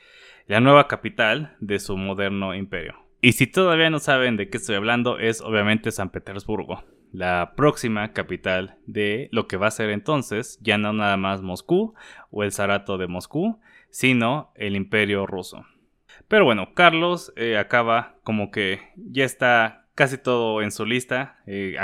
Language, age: Spanish, 20-39